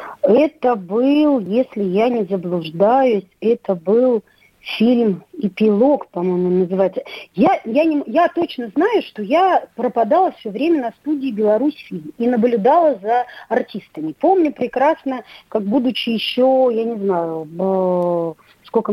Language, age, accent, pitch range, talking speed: Russian, 40-59, native, 200-285 Hz, 125 wpm